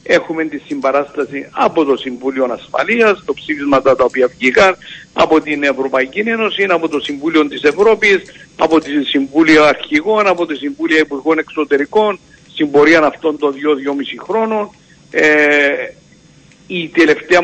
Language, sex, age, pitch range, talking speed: Greek, male, 60-79, 140-170 Hz, 135 wpm